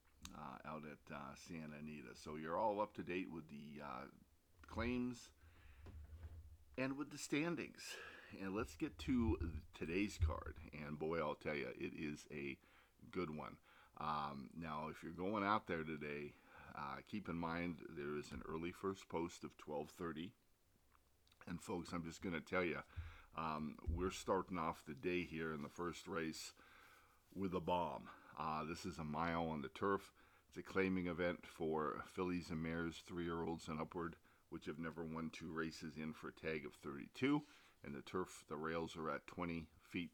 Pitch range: 75-90 Hz